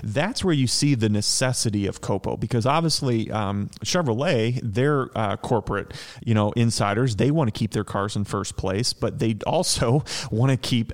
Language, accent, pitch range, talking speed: English, American, 105-130 Hz, 180 wpm